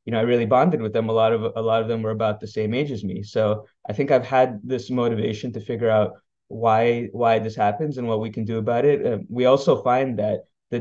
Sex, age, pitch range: male, 20-39, 110-125 Hz